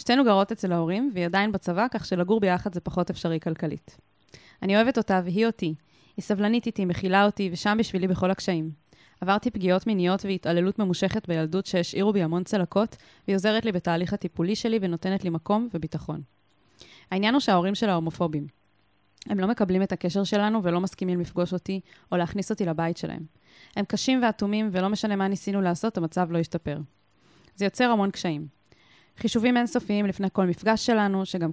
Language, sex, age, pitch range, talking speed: Hebrew, female, 20-39, 170-210 Hz, 145 wpm